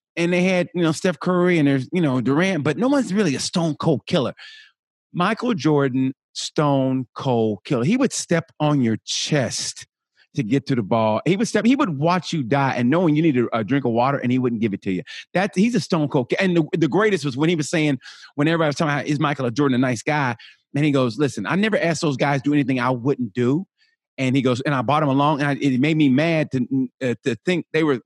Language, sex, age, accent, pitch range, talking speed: English, male, 30-49, American, 130-170 Hz, 260 wpm